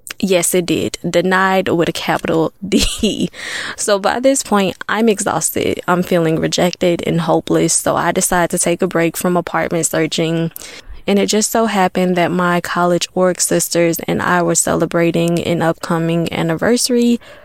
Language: English